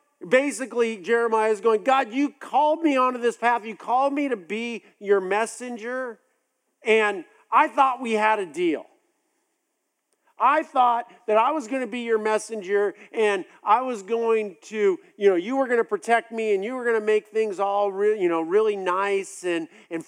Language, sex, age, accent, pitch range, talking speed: English, male, 50-69, American, 210-270 Hz, 190 wpm